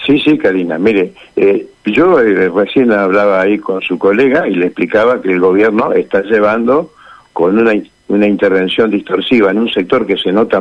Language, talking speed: Spanish, 180 wpm